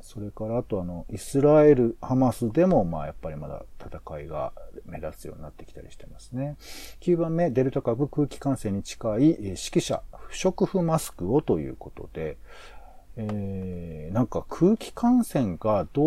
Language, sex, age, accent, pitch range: Japanese, male, 40-59, native, 95-145 Hz